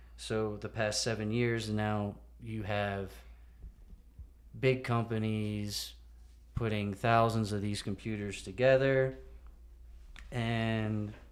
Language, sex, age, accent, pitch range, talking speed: English, male, 30-49, American, 95-110 Hz, 90 wpm